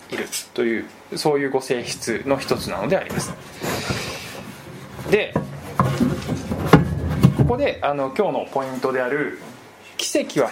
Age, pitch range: 20-39, 155-260 Hz